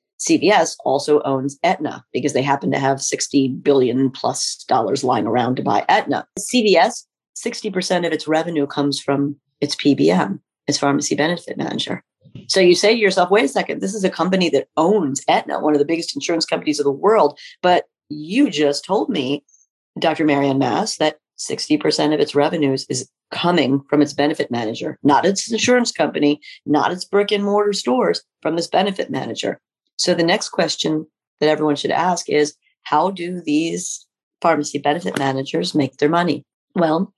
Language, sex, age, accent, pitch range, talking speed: English, female, 40-59, American, 145-185 Hz, 170 wpm